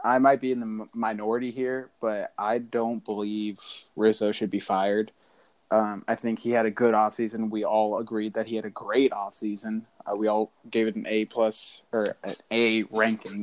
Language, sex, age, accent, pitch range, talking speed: English, male, 20-39, American, 110-120 Hz, 195 wpm